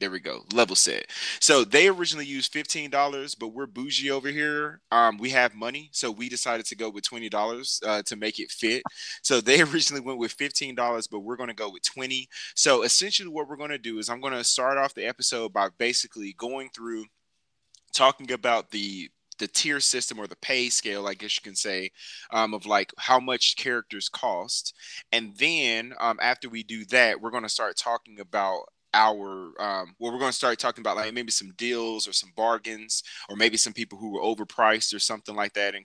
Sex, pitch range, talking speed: male, 105-130 Hz, 210 wpm